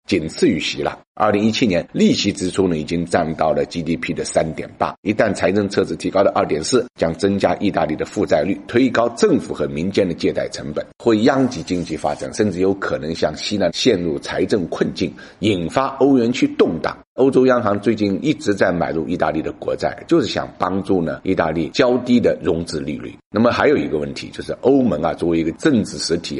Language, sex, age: Chinese, male, 50-69